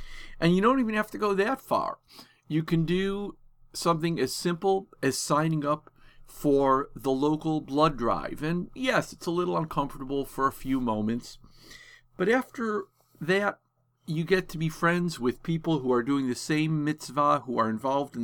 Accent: American